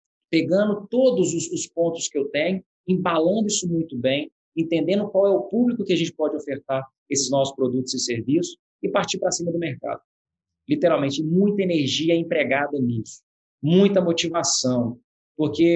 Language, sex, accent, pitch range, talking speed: Portuguese, male, Brazilian, 145-185 Hz, 155 wpm